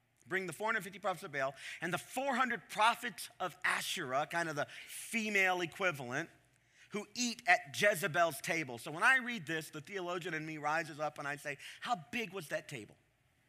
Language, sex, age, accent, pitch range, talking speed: English, male, 40-59, American, 145-210 Hz, 180 wpm